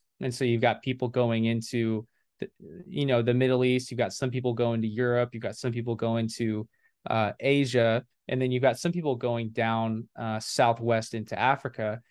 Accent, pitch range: American, 115-130 Hz